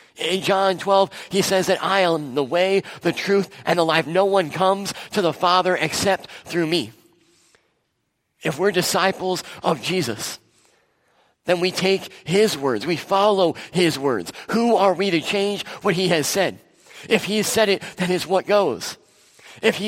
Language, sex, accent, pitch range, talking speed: English, male, American, 165-195 Hz, 175 wpm